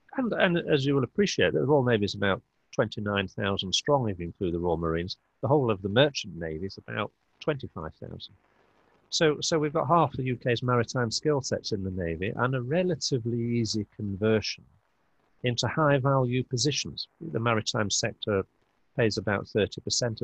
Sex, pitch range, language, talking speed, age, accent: male, 100-125 Hz, English, 165 wpm, 50-69, British